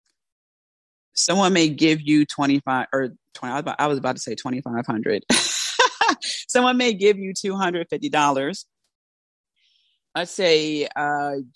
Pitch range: 135-170 Hz